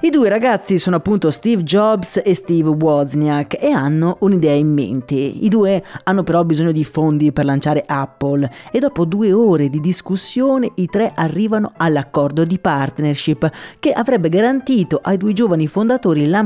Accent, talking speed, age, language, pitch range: native, 165 wpm, 30-49, Italian, 145-200 Hz